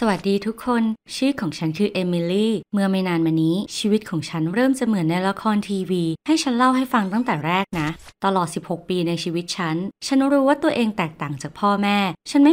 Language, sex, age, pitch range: Thai, female, 20-39, 165-235 Hz